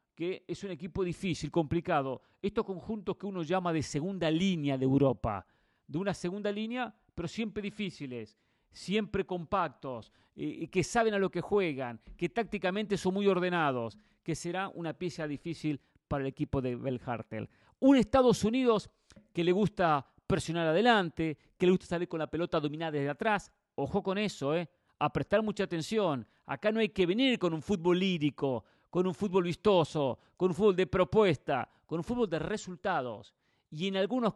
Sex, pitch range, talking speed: male, 150-205 Hz, 175 wpm